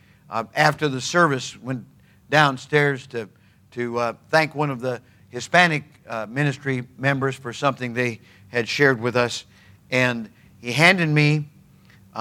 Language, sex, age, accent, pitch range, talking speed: English, male, 50-69, American, 125-175 Hz, 145 wpm